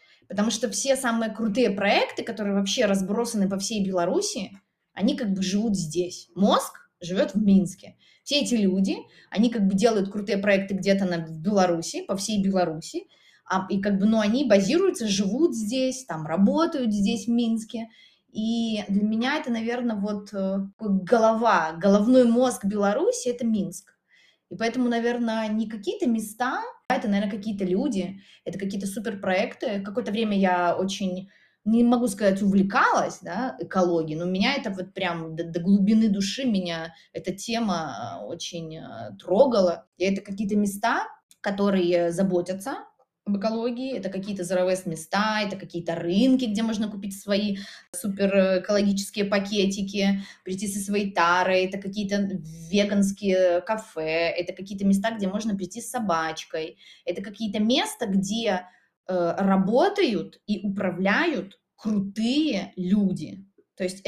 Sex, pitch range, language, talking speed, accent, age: female, 185-225 Hz, Russian, 135 wpm, native, 20-39